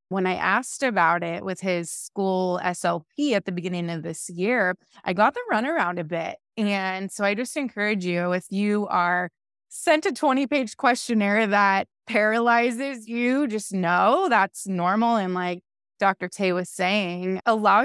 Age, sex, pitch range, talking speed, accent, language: 20-39, female, 185-250 Hz, 160 wpm, American, English